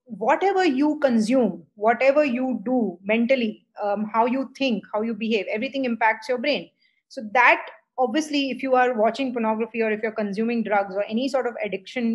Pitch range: 195-230 Hz